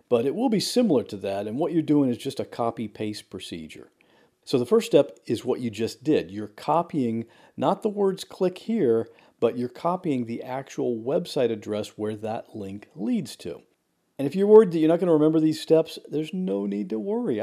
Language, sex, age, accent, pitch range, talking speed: English, male, 50-69, American, 120-170 Hz, 210 wpm